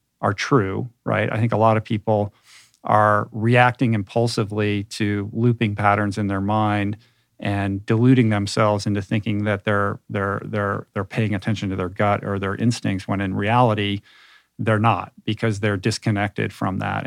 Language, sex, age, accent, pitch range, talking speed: English, male, 40-59, American, 100-115 Hz, 160 wpm